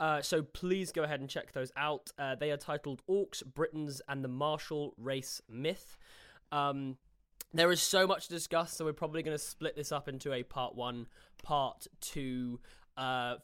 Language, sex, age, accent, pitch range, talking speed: English, male, 10-29, British, 135-170 Hz, 190 wpm